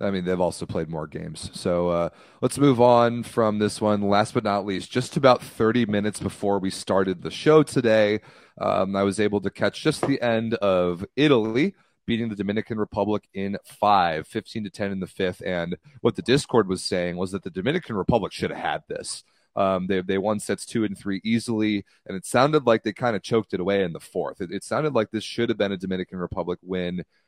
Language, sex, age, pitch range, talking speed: English, male, 30-49, 90-110 Hz, 220 wpm